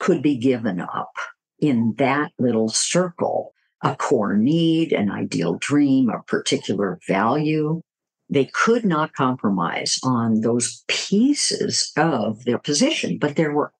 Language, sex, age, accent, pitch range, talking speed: English, female, 50-69, American, 130-205 Hz, 130 wpm